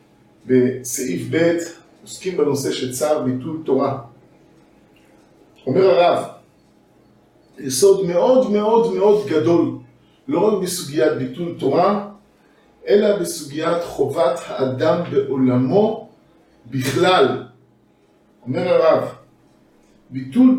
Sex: male